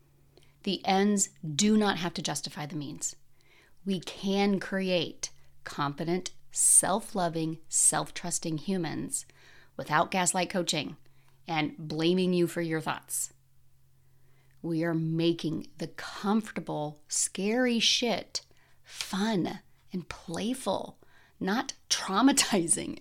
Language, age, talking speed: English, 30-49, 95 wpm